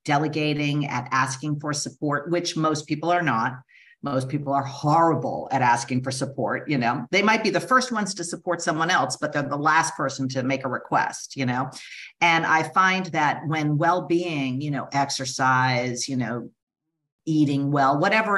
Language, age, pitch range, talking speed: English, 50-69, 135-165 Hz, 180 wpm